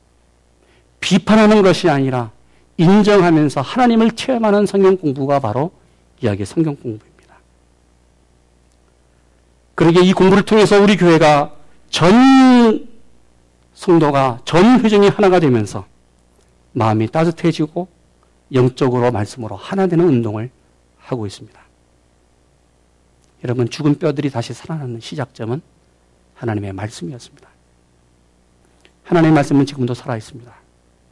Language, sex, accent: Korean, male, native